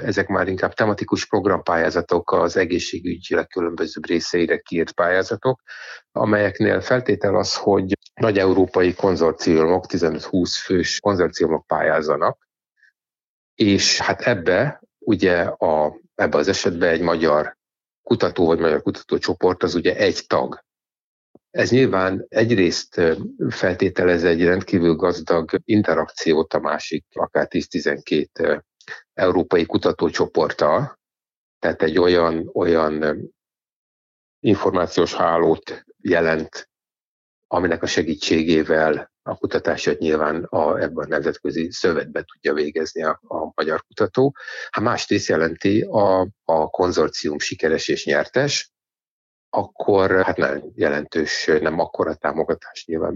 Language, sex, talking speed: Hungarian, male, 105 wpm